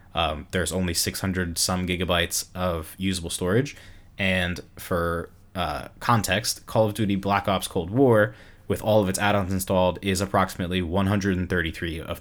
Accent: American